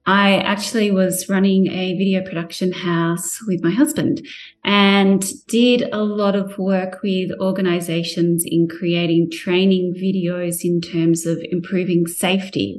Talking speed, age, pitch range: 130 wpm, 30-49, 180-240 Hz